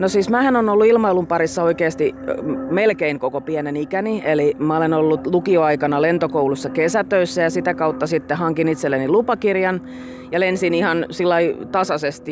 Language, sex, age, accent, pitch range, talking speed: Finnish, female, 30-49, native, 150-190 Hz, 150 wpm